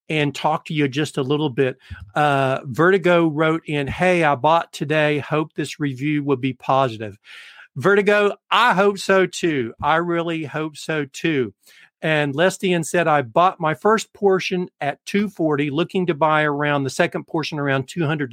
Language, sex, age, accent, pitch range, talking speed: English, male, 50-69, American, 145-175 Hz, 165 wpm